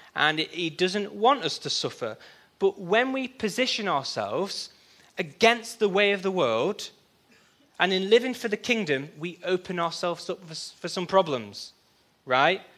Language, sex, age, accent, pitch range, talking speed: English, male, 20-39, British, 145-195 Hz, 150 wpm